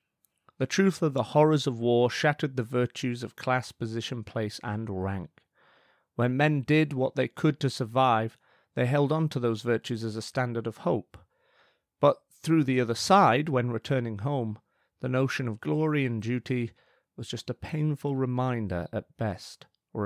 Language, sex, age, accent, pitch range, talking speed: English, male, 30-49, British, 110-130 Hz, 170 wpm